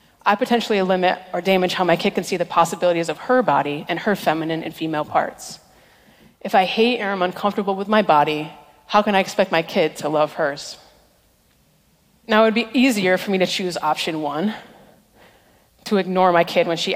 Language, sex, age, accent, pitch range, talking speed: French, female, 30-49, American, 160-200 Hz, 200 wpm